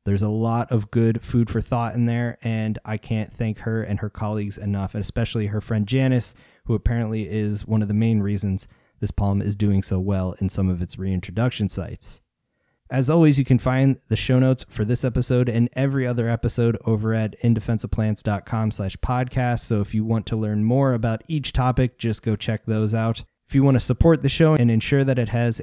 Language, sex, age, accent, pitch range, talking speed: English, male, 20-39, American, 105-125 Hz, 210 wpm